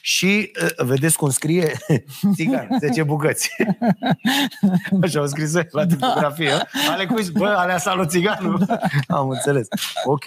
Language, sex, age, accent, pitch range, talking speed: Romanian, male, 30-49, native, 110-160 Hz, 125 wpm